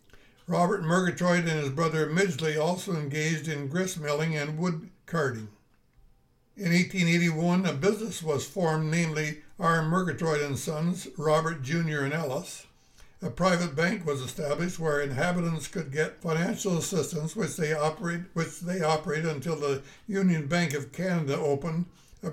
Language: English